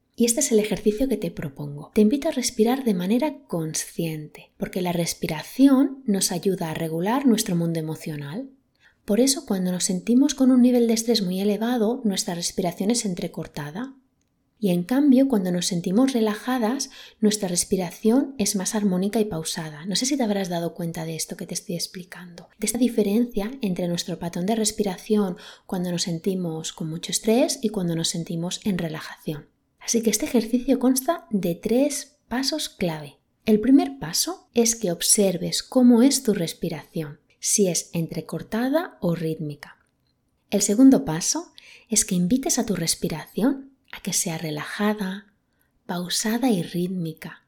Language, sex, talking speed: Spanish, female, 160 wpm